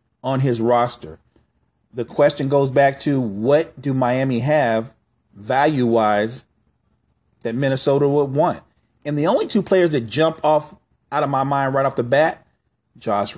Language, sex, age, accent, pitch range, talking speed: English, male, 40-59, American, 115-140 Hz, 155 wpm